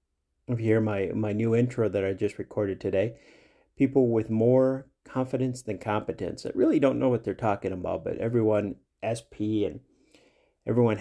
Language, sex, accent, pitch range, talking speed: English, male, American, 100-125 Hz, 170 wpm